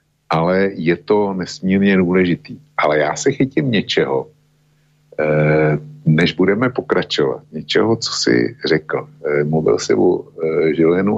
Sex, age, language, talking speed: male, 60-79, Slovak, 115 wpm